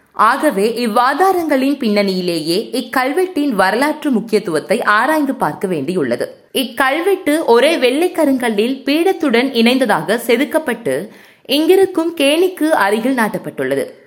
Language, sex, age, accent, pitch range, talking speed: Tamil, female, 20-39, native, 215-310 Hz, 80 wpm